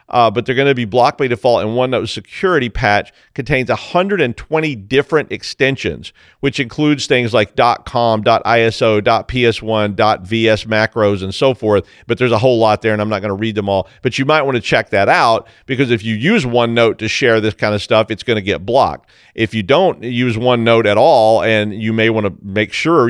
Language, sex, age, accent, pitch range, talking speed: English, male, 40-59, American, 110-130 Hz, 210 wpm